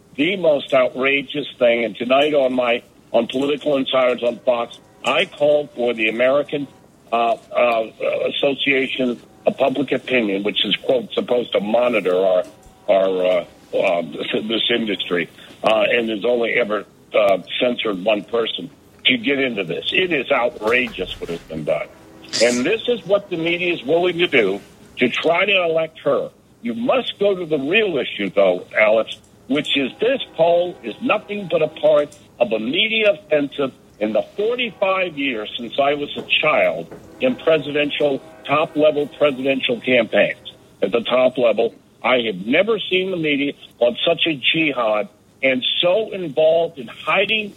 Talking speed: 160 wpm